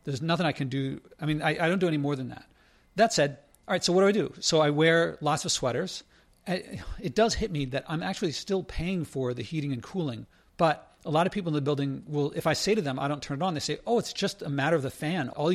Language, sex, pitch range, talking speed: English, male, 135-165 Hz, 285 wpm